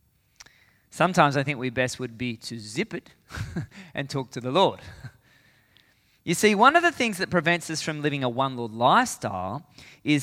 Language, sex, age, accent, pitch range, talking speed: English, male, 20-39, Australian, 125-190 Hz, 180 wpm